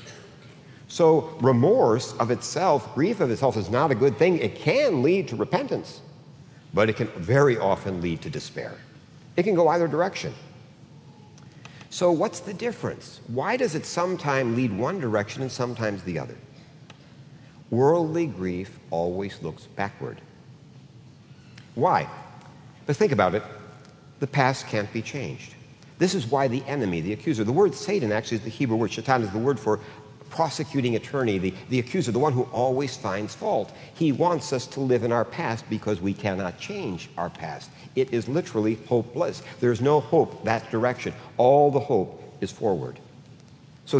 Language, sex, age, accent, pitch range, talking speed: English, male, 60-79, American, 110-150 Hz, 165 wpm